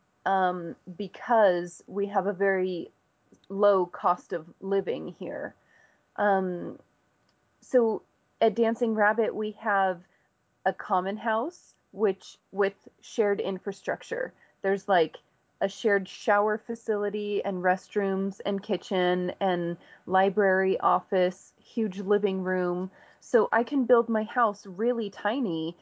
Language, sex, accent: English, female, American